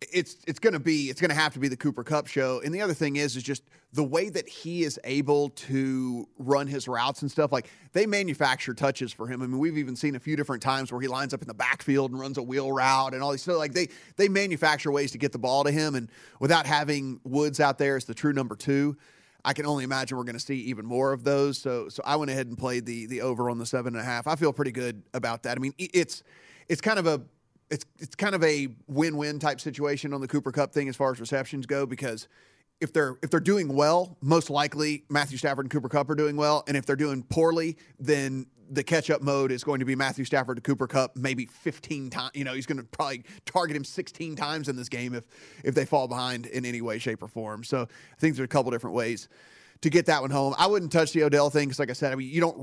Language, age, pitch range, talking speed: English, 30-49, 130-155 Hz, 270 wpm